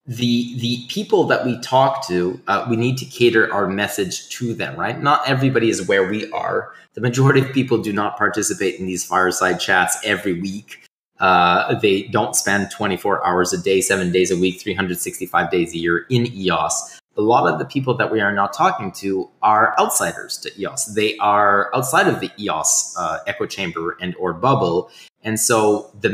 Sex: male